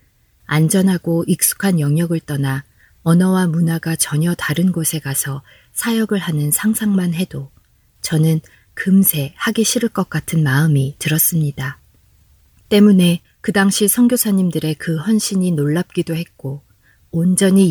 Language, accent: Korean, native